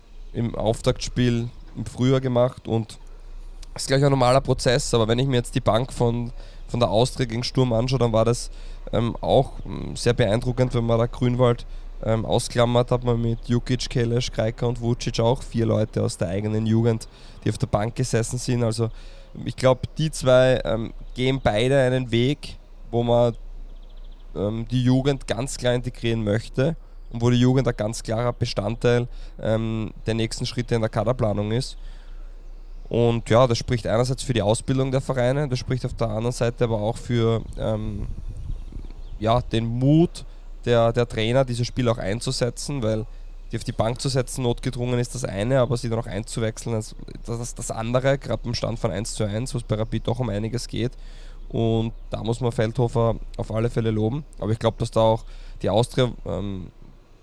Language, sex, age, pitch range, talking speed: German, male, 20-39, 110-125 Hz, 190 wpm